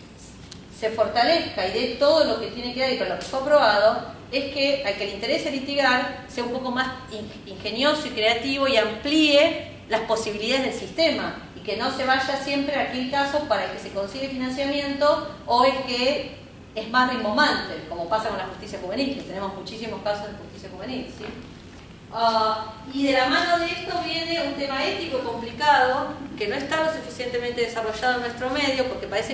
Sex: female